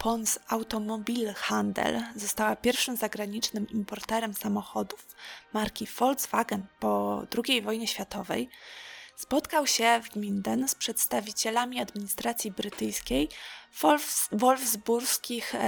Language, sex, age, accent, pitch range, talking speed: Polish, female, 20-39, native, 205-245 Hz, 90 wpm